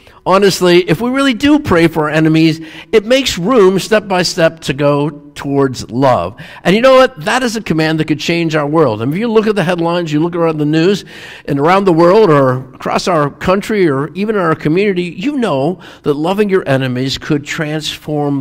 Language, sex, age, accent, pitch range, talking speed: English, male, 50-69, American, 130-180 Hz, 210 wpm